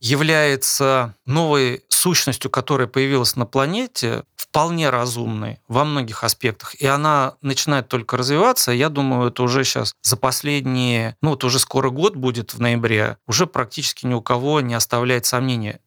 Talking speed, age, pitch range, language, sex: 150 wpm, 30-49, 120-140 Hz, Russian, male